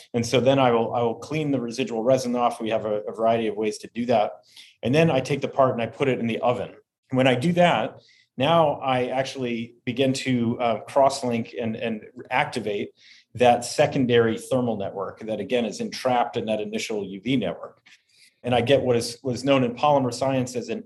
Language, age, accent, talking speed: English, 30-49, American, 215 wpm